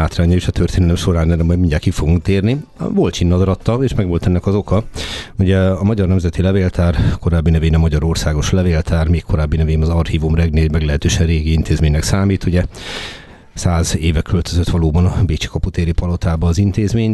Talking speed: 165 wpm